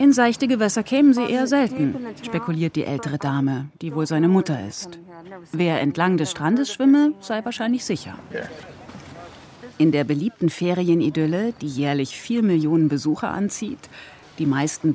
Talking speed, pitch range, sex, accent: 145 wpm, 150-210 Hz, female, German